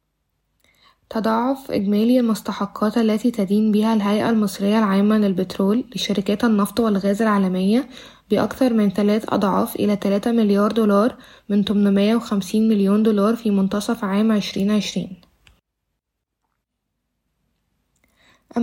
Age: 20-39